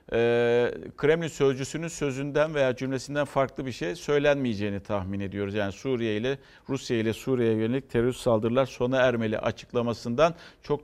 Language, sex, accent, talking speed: Turkish, male, native, 135 wpm